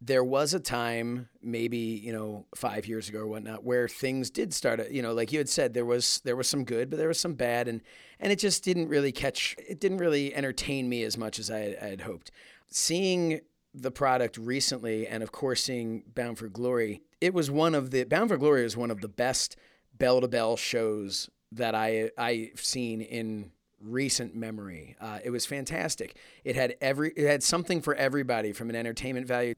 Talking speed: 210 wpm